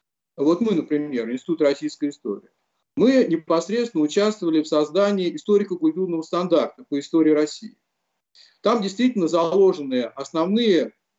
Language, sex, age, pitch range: Russian, male, 40-59, 150-205 Hz